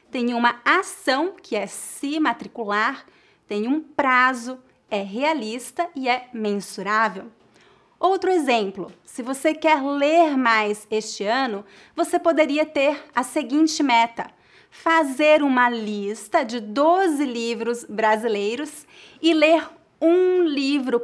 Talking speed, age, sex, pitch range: 115 wpm, 30-49, female, 225-305 Hz